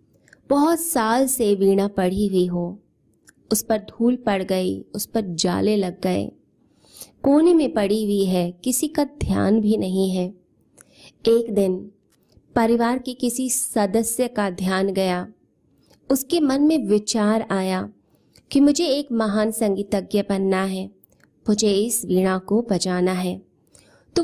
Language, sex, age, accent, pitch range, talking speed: Hindi, female, 20-39, native, 190-240 Hz, 140 wpm